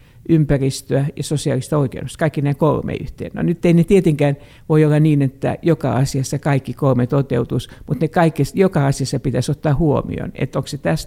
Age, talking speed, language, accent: 60-79, 185 wpm, Finnish, native